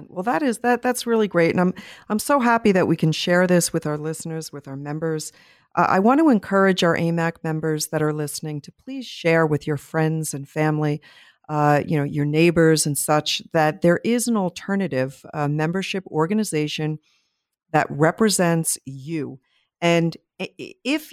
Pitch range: 155-215 Hz